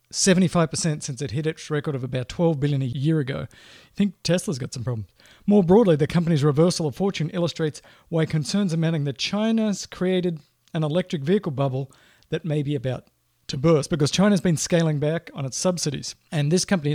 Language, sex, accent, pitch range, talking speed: English, male, Australian, 135-170 Hz, 190 wpm